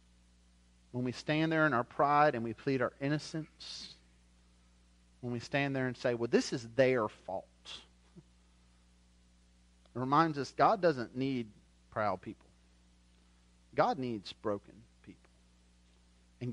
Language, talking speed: English, 130 wpm